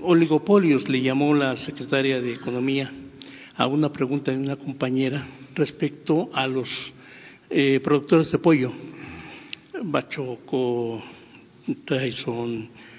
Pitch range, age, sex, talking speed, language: 130-155 Hz, 60-79, male, 100 wpm, Spanish